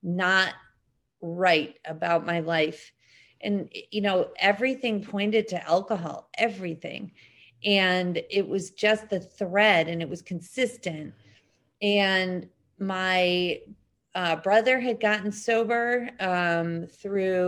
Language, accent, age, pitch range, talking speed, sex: English, American, 40-59, 170-200 Hz, 110 wpm, female